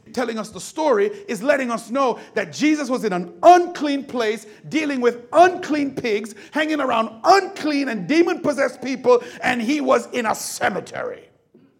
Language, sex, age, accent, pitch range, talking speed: English, male, 40-59, American, 205-290 Hz, 160 wpm